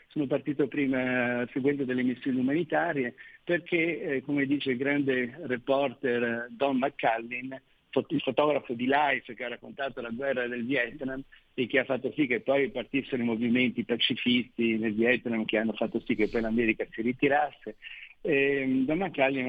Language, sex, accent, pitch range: Italian, male, native, 125-145 Hz